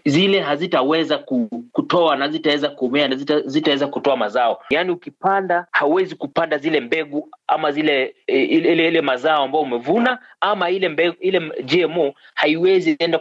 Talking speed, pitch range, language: 135 wpm, 145-195 Hz, Swahili